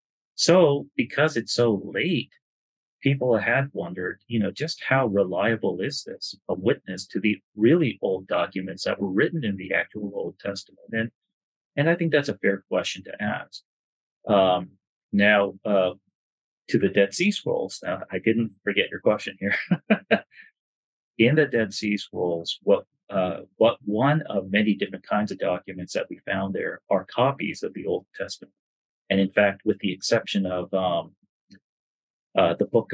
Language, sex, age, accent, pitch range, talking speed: English, male, 30-49, American, 95-140 Hz, 165 wpm